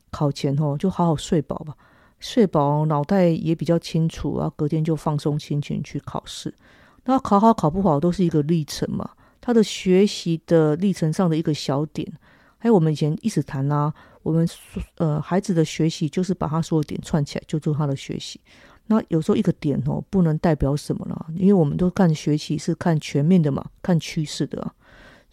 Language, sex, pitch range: Chinese, female, 150-190 Hz